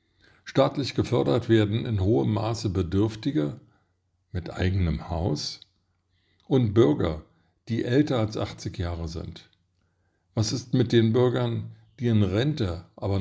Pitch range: 90-115 Hz